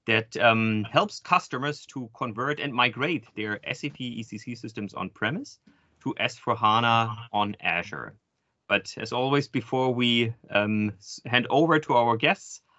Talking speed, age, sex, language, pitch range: 130 wpm, 30-49, male, English, 105-130 Hz